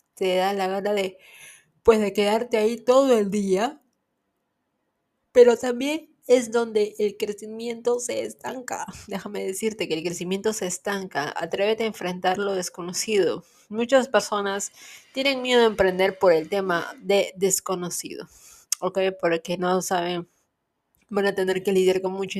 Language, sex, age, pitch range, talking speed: Spanish, female, 20-39, 190-225 Hz, 145 wpm